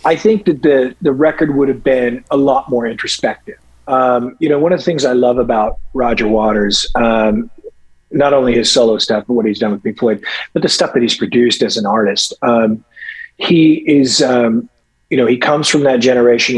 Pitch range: 115-140 Hz